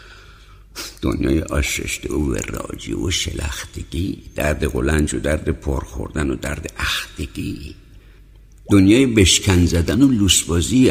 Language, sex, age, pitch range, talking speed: Persian, male, 60-79, 80-100 Hz, 105 wpm